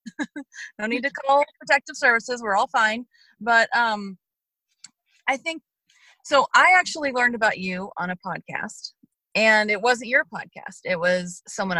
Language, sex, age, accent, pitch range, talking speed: English, female, 30-49, American, 185-255 Hz, 155 wpm